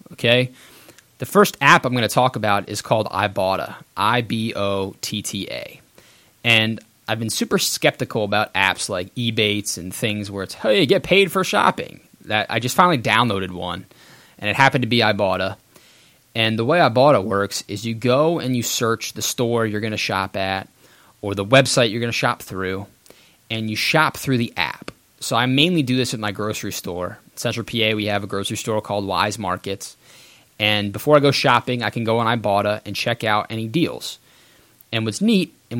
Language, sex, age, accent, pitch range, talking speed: English, male, 20-39, American, 105-135 Hz, 190 wpm